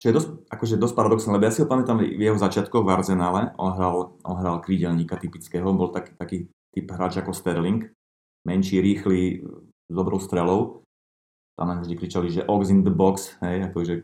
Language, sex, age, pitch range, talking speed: Slovak, male, 30-49, 85-100 Hz, 185 wpm